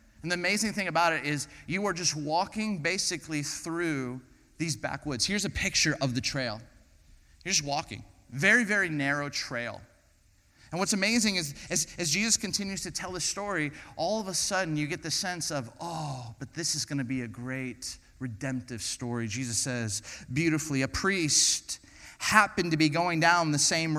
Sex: male